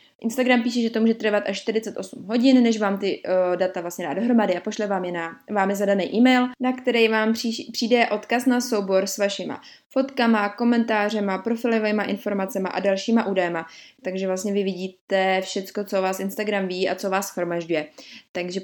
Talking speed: 180 wpm